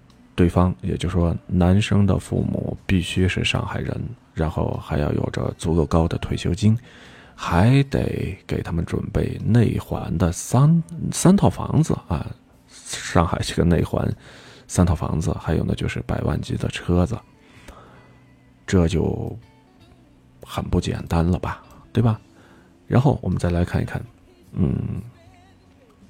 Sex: male